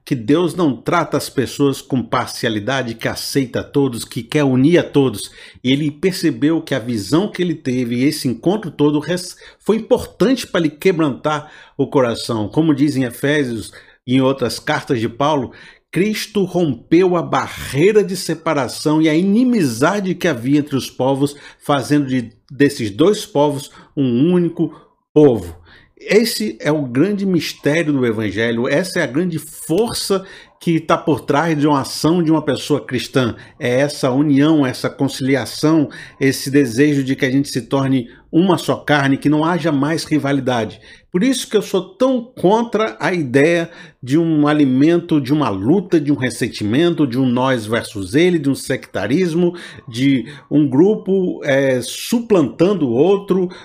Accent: Brazilian